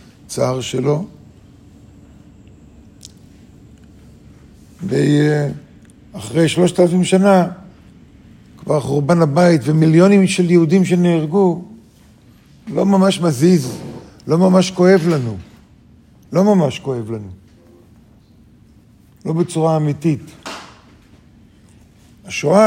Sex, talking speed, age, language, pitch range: male, 75 wpm, 50-69, Hebrew, 125-175 Hz